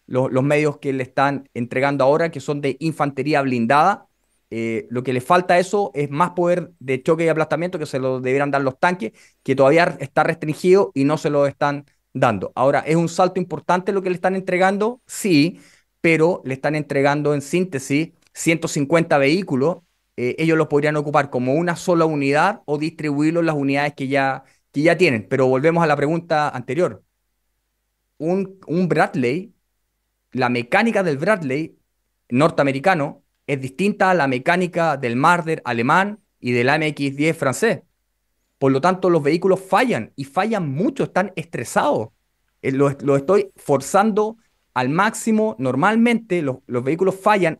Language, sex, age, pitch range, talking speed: Spanish, male, 30-49, 135-180 Hz, 165 wpm